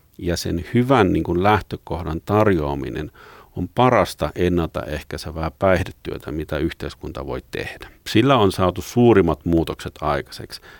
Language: Finnish